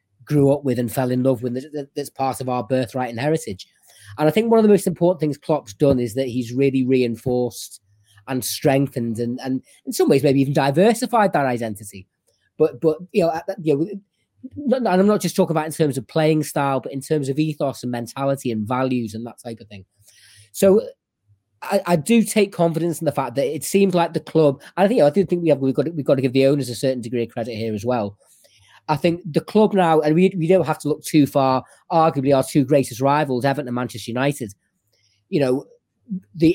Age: 30-49